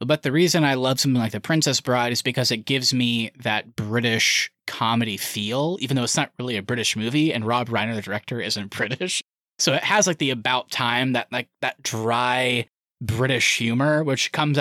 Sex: male